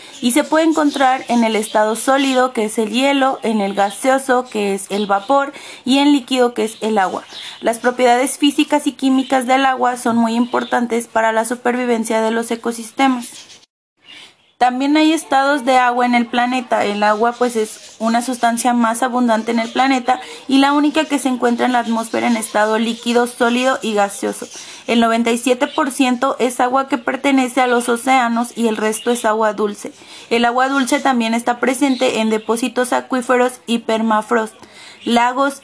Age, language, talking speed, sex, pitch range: 20-39, Spanish, 175 wpm, female, 225-270 Hz